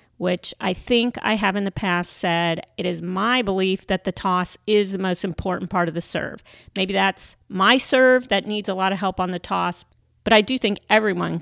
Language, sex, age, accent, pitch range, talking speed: English, female, 40-59, American, 180-220 Hz, 220 wpm